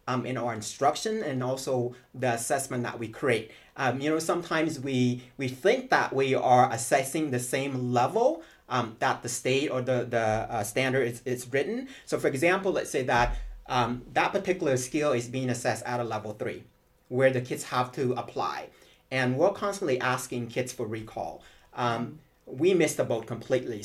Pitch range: 120-135 Hz